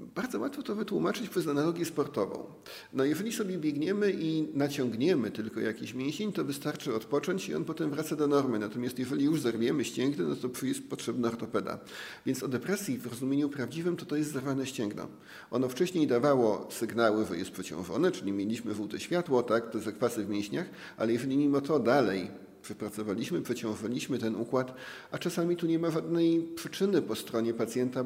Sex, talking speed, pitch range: male, 170 wpm, 120-160 Hz